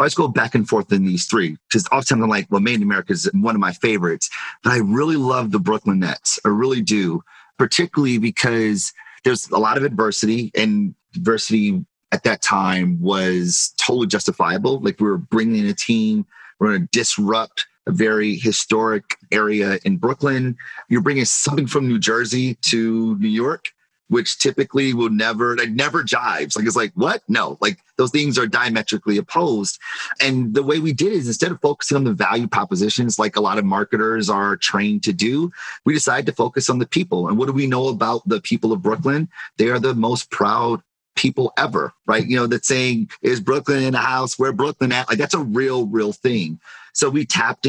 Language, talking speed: English, 200 wpm